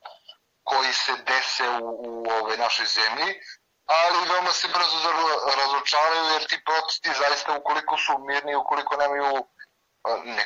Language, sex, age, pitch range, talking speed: Croatian, male, 30-49, 120-155 Hz, 130 wpm